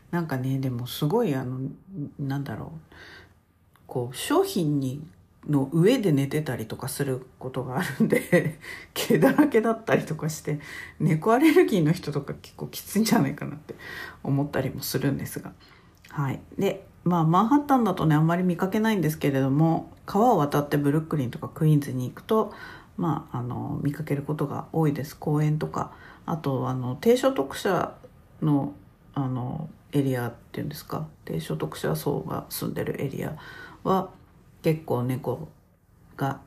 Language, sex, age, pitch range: Japanese, female, 50-69, 135-180 Hz